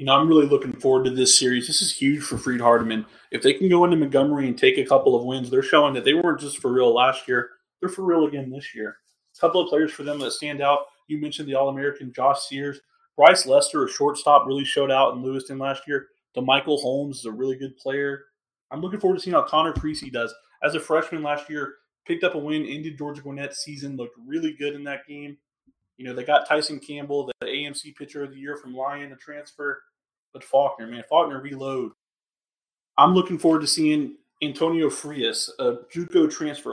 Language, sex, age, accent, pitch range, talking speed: English, male, 30-49, American, 135-160 Hz, 220 wpm